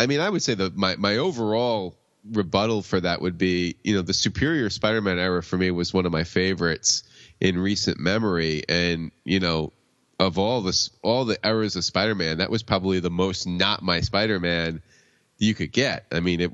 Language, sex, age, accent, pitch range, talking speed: English, male, 30-49, American, 90-110 Hz, 200 wpm